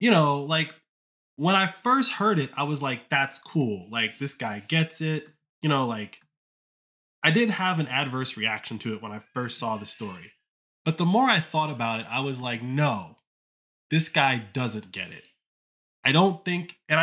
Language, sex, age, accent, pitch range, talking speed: English, male, 20-39, American, 115-155 Hz, 195 wpm